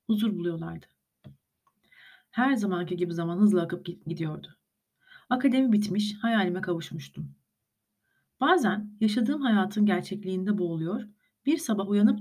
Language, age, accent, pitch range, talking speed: Turkish, 40-59, native, 175-225 Hz, 105 wpm